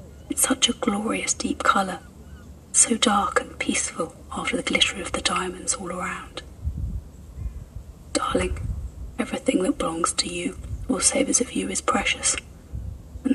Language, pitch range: English, 80-110 Hz